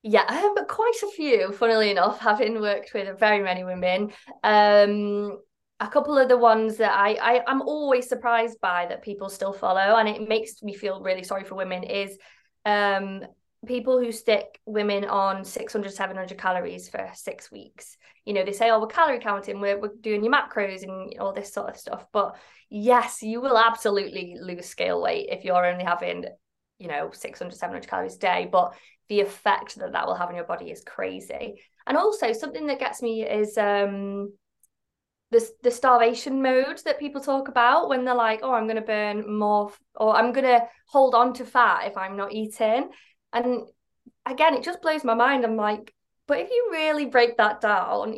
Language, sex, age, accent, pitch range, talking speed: English, female, 20-39, British, 200-255 Hz, 195 wpm